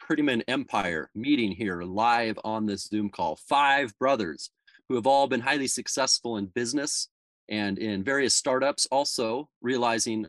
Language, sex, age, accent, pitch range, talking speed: English, male, 30-49, American, 105-140 Hz, 145 wpm